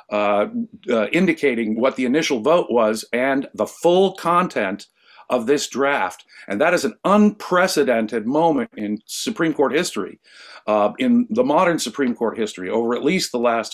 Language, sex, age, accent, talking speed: English, male, 50-69, American, 160 wpm